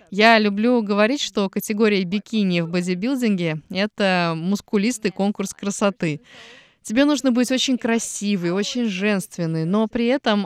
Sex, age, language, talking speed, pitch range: female, 20-39, Russian, 125 wpm, 190-240 Hz